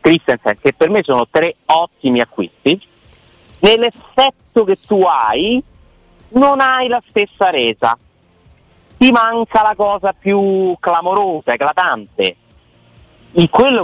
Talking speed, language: 110 wpm, Italian